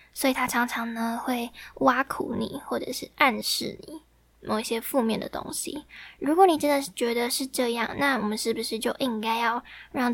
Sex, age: female, 10-29